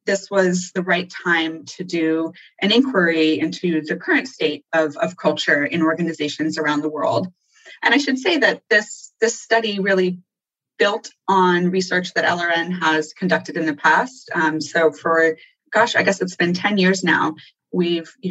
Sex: female